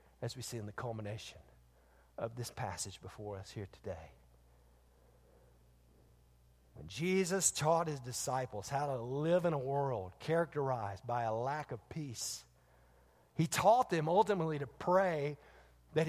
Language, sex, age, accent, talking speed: English, male, 50-69, American, 140 wpm